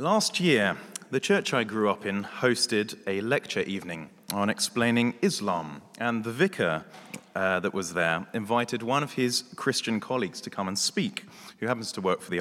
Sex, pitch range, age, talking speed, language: male, 100-135 Hz, 30-49, 185 wpm, English